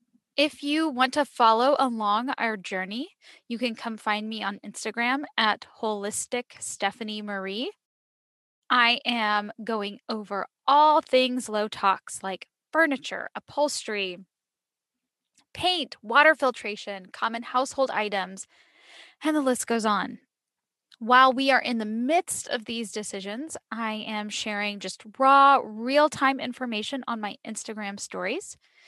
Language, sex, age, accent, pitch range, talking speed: English, female, 10-29, American, 210-265 Hz, 130 wpm